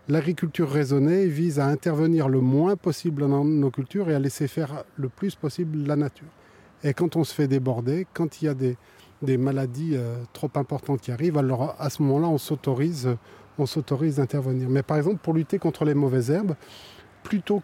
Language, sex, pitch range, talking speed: French, male, 130-160 Hz, 190 wpm